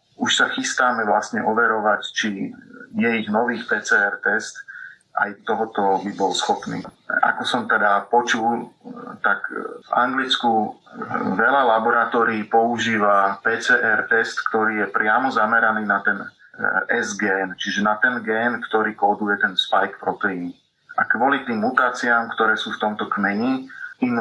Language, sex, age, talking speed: Slovak, male, 30-49, 130 wpm